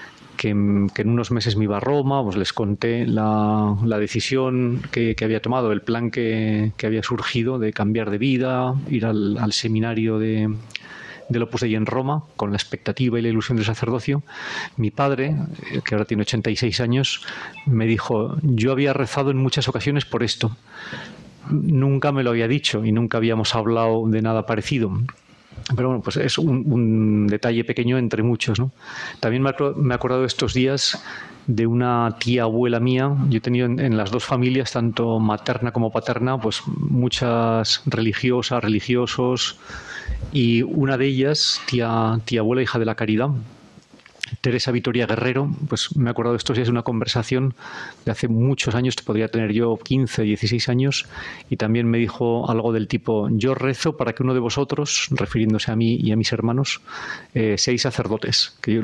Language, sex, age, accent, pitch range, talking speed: Spanish, male, 30-49, Spanish, 110-130 Hz, 175 wpm